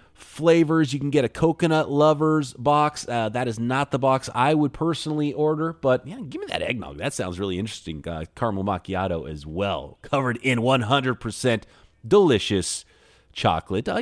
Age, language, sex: 30-49, English, male